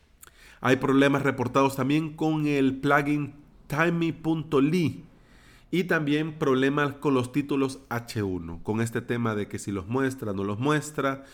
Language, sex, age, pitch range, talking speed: Spanish, male, 40-59, 110-140 Hz, 140 wpm